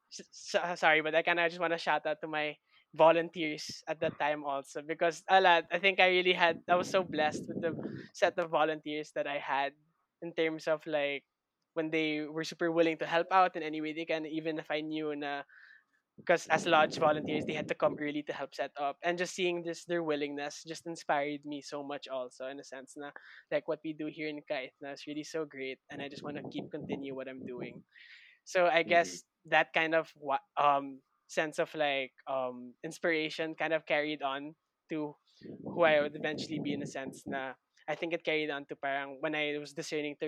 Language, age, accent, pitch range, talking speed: English, 20-39, Filipino, 145-165 Hz, 220 wpm